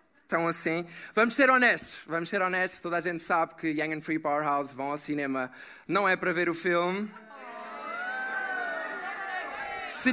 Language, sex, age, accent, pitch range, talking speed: Portuguese, male, 20-39, Portuguese, 185-245 Hz, 155 wpm